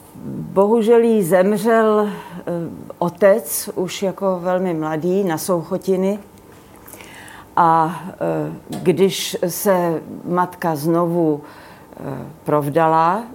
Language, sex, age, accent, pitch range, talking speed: Czech, female, 40-59, native, 155-190 Hz, 70 wpm